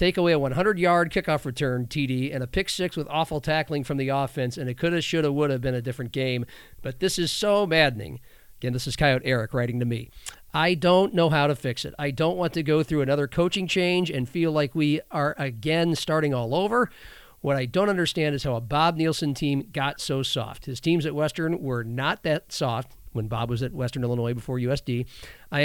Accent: American